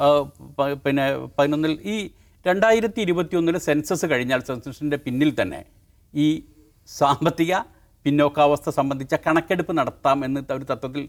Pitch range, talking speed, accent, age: 130-185 Hz, 80 wpm, Indian, 50-69